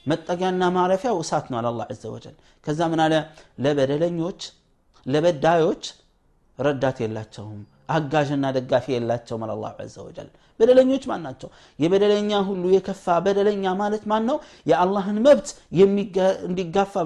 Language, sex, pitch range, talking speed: Amharic, male, 140-190 Hz, 105 wpm